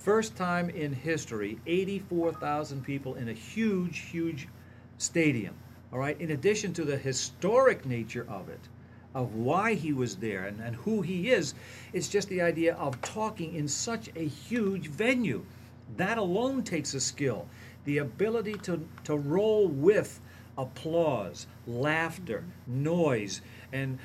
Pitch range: 120-170 Hz